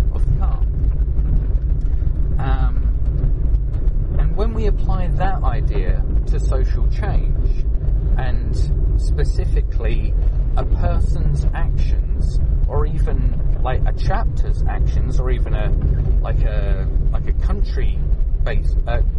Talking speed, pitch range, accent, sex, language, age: 95 wpm, 70-75 Hz, British, male, English, 30-49